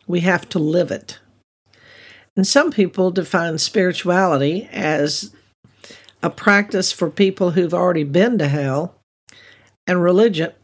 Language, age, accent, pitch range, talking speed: English, 60-79, American, 165-205 Hz, 125 wpm